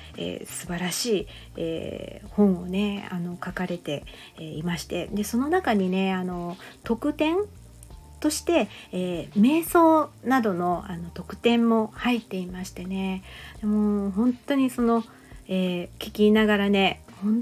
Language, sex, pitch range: Japanese, female, 185-230 Hz